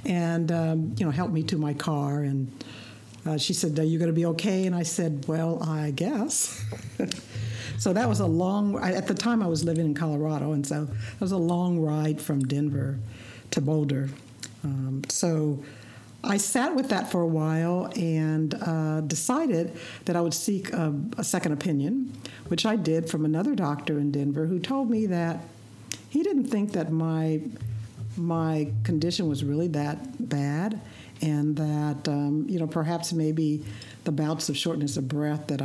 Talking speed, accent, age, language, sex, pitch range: 180 wpm, American, 60-79, English, female, 135-170 Hz